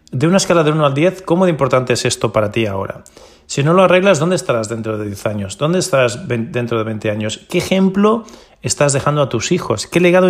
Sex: male